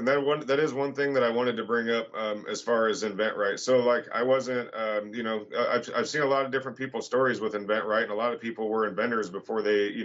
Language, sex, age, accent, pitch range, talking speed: English, male, 40-59, American, 105-125 Hz, 270 wpm